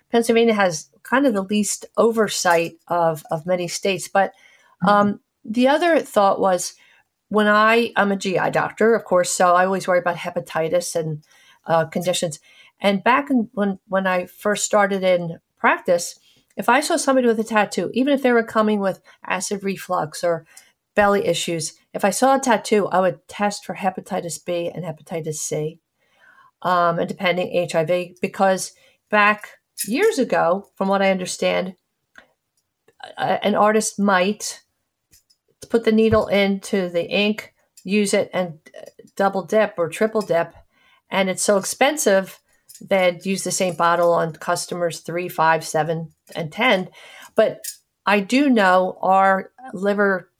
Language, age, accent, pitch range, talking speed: English, 50-69, American, 175-210 Hz, 150 wpm